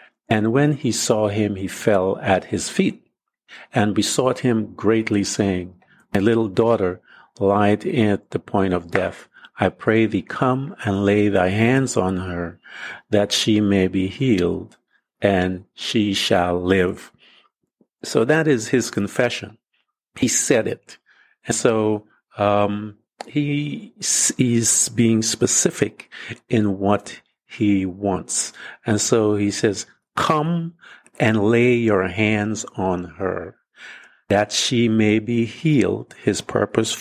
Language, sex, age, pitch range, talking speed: English, male, 50-69, 95-115 Hz, 130 wpm